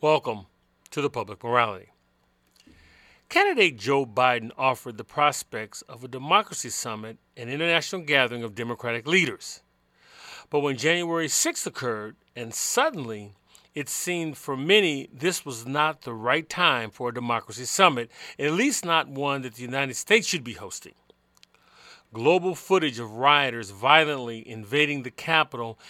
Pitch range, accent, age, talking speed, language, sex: 125-175 Hz, American, 40-59, 140 wpm, English, male